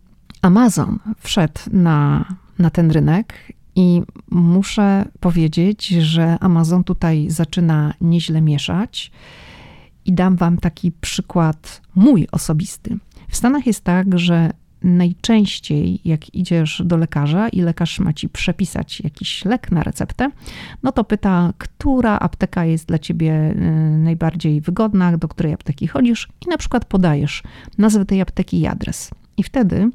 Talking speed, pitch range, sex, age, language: 130 wpm, 165-210 Hz, female, 40-59, Polish